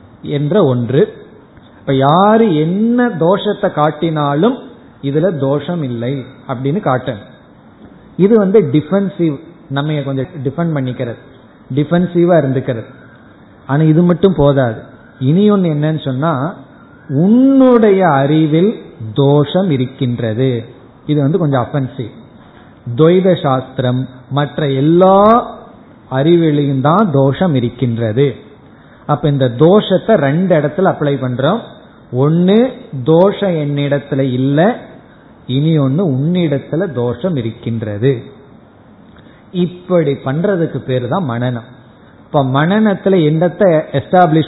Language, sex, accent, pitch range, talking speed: Tamil, male, native, 130-180 Hz, 55 wpm